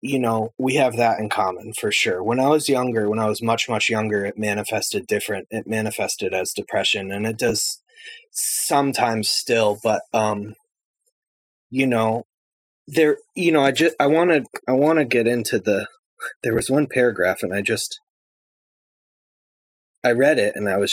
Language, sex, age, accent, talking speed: English, male, 20-39, American, 180 wpm